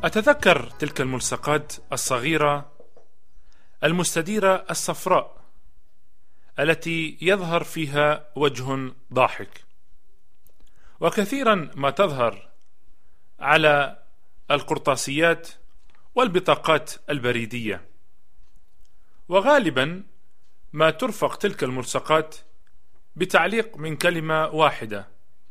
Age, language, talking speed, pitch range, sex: 40-59, Arabic, 65 wpm, 110-180 Hz, male